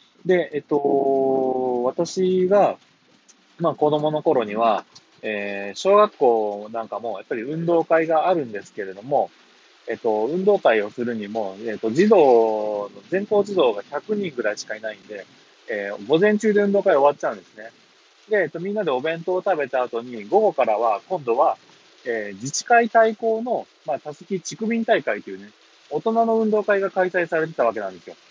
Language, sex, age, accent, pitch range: Japanese, male, 20-39, native, 120-190 Hz